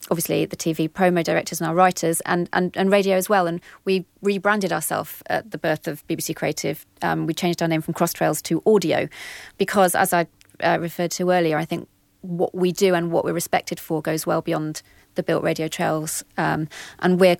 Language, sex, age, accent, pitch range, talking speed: English, female, 30-49, British, 160-185 Hz, 210 wpm